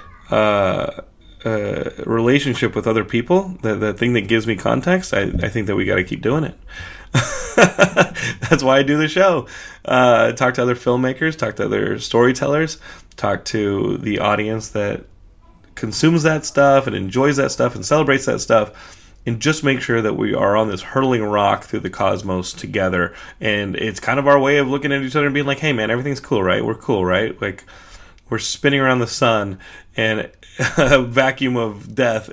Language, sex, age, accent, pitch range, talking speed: English, male, 30-49, American, 105-135 Hz, 185 wpm